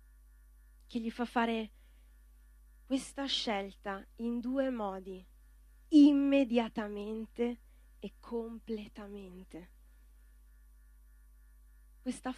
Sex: female